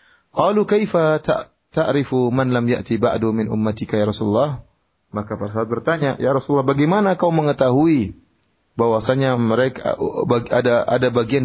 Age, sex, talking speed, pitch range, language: 30-49, male, 85 wpm, 110-155 Hz, Indonesian